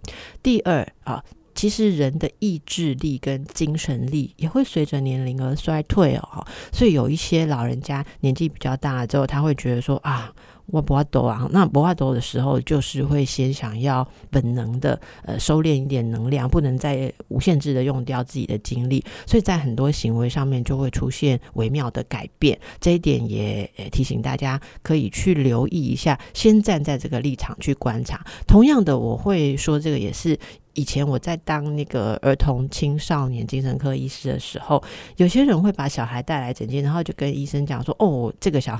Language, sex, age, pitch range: Chinese, female, 50-69, 130-155 Hz